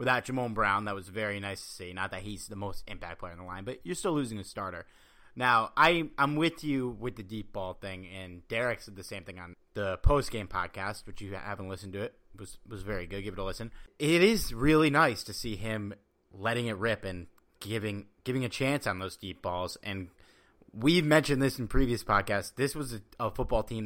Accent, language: American, English